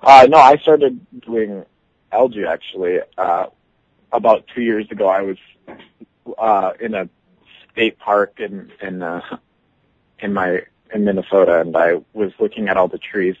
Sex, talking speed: male, 150 wpm